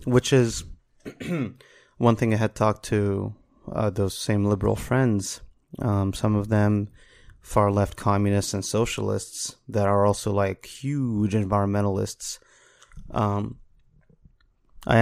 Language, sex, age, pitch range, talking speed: English, male, 30-49, 100-115 Hz, 120 wpm